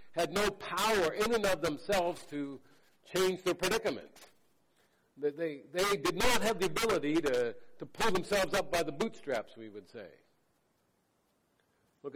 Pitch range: 130-180 Hz